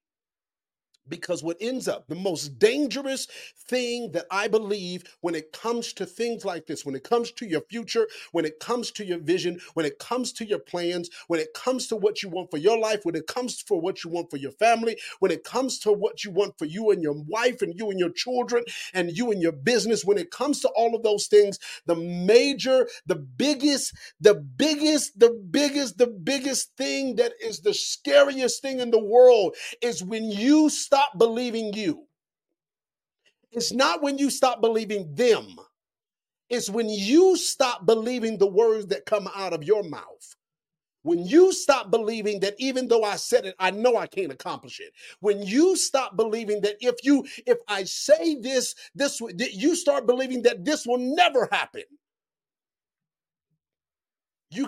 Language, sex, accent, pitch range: English, male, American, 200-270 Hz